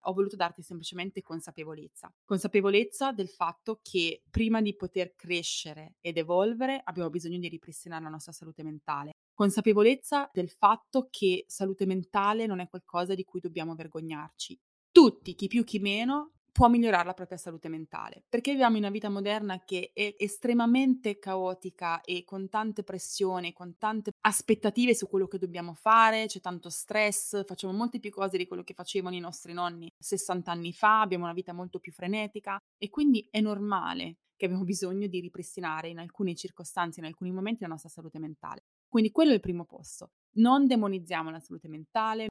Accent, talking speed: native, 175 wpm